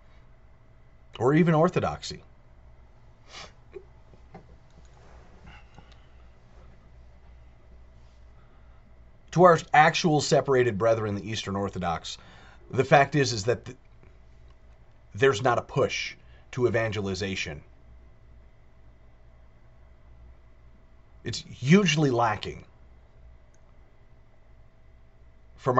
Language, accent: English, American